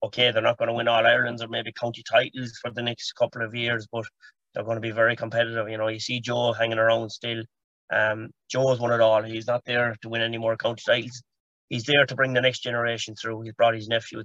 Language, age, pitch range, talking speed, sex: English, 30-49, 115-130 Hz, 250 wpm, male